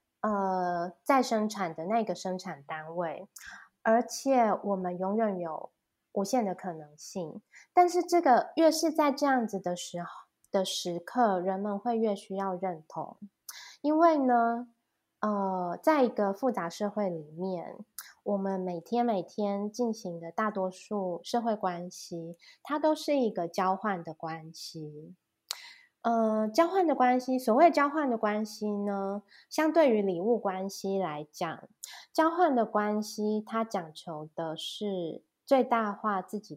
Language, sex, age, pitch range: Chinese, female, 20-39, 180-240 Hz